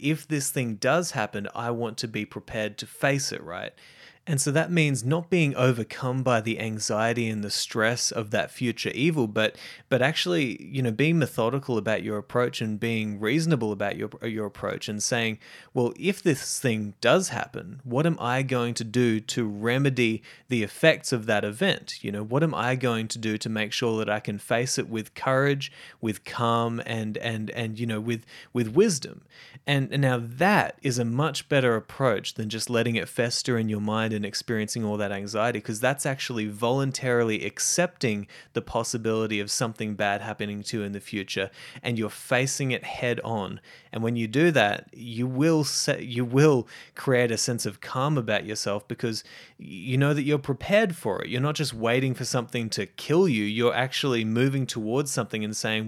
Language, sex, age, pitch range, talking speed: English, male, 30-49, 110-135 Hz, 195 wpm